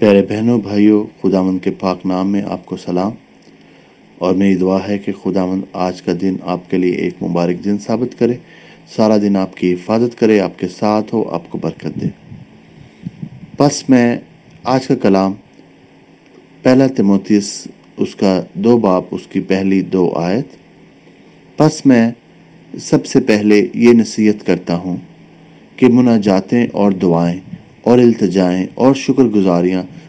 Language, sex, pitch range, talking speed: English, male, 95-115 Hz, 135 wpm